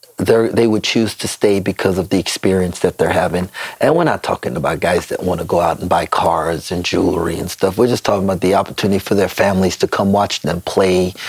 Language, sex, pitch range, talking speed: English, male, 95-105 Hz, 235 wpm